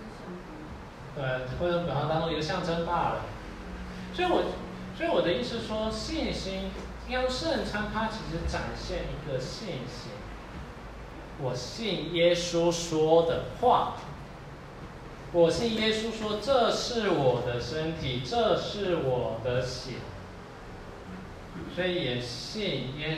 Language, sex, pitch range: Chinese, male, 135-225 Hz